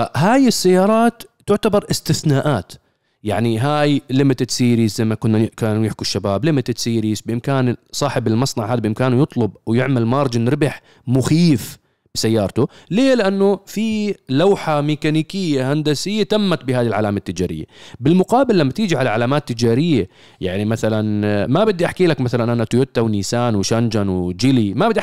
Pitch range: 120-165 Hz